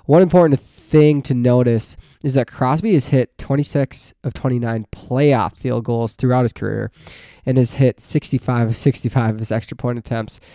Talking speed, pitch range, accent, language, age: 170 wpm, 115-135 Hz, American, English, 20-39